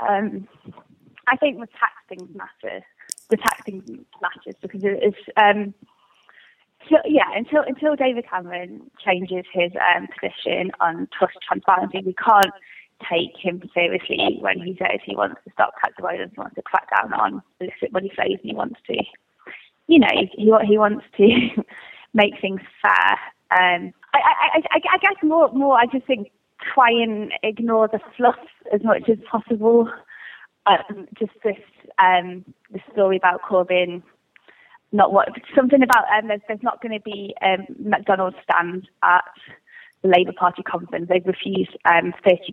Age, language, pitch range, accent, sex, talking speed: 20-39, English, 190-275 Hz, British, female, 160 wpm